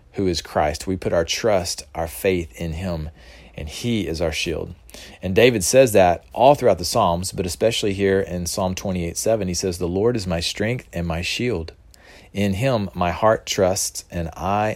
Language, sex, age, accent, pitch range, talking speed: English, male, 40-59, American, 85-105 Hz, 195 wpm